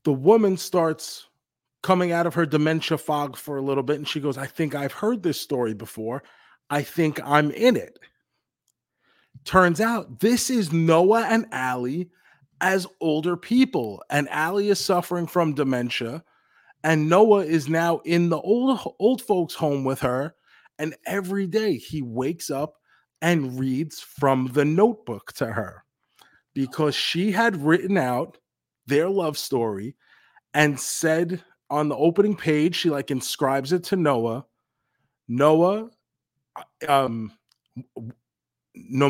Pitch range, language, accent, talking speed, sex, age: 135-175 Hz, English, American, 140 wpm, male, 30-49